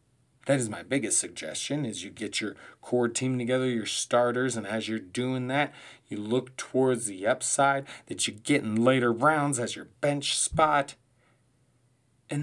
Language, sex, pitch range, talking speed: English, male, 120-145 Hz, 170 wpm